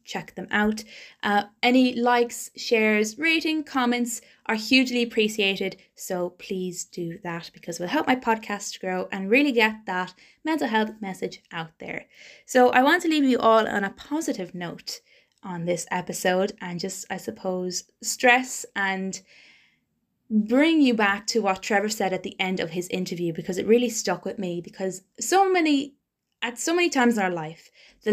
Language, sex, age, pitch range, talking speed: English, female, 20-39, 185-255 Hz, 175 wpm